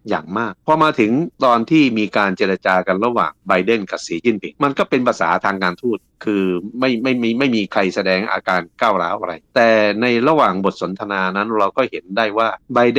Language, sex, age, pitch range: Thai, male, 60-79, 95-120 Hz